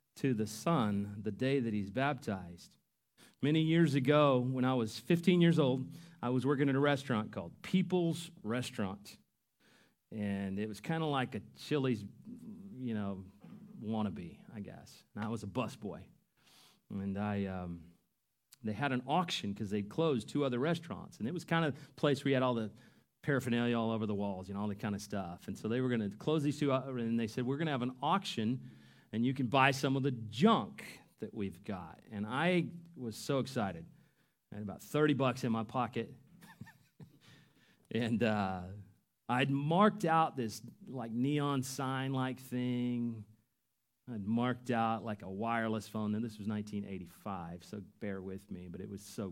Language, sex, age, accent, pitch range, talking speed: English, male, 40-59, American, 105-140 Hz, 185 wpm